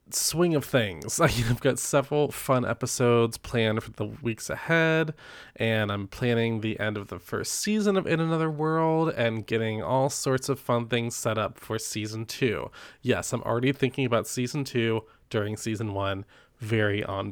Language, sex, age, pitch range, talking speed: English, male, 20-39, 110-145 Hz, 175 wpm